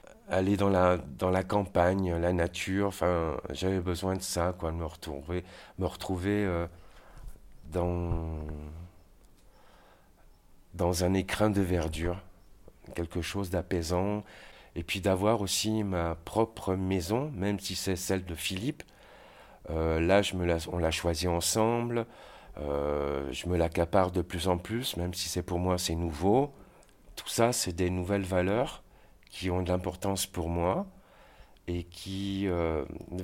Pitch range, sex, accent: 85-100 Hz, male, French